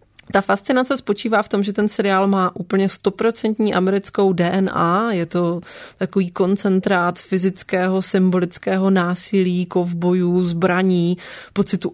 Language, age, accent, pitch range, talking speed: Czech, 30-49, native, 180-200 Hz, 115 wpm